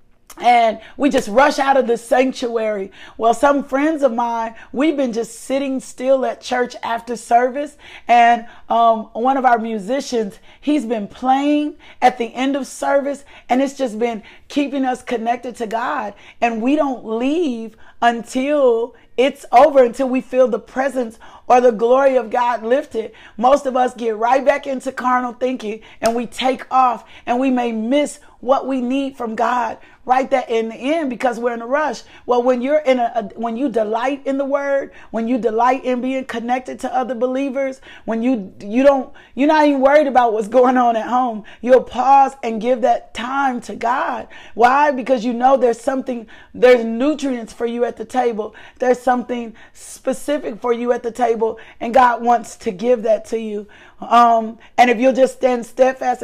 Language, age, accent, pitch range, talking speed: English, 40-59, American, 230-265 Hz, 185 wpm